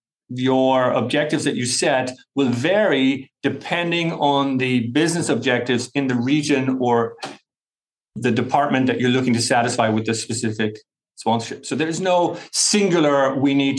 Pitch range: 120-145 Hz